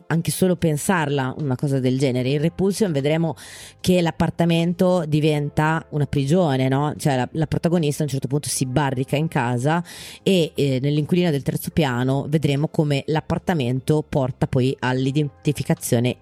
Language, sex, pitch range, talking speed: Italian, female, 130-160 Hz, 150 wpm